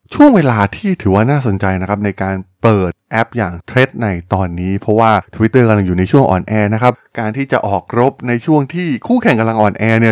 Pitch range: 100-135 Hz